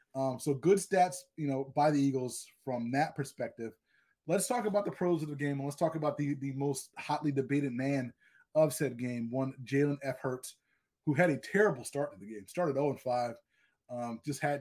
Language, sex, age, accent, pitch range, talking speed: English, male, 20-39, American, 135-170 Hz, 205 wpm